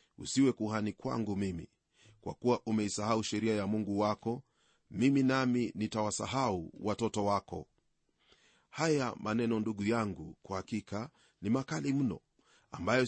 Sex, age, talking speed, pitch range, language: male, 40-59, 120 wpm, 105-125 Hz, Swahili